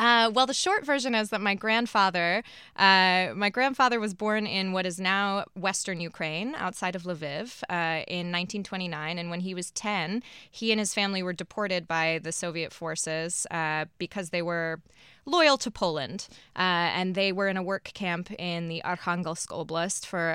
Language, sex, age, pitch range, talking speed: English, female, 20-39, 170-210 Hz, 180 wpm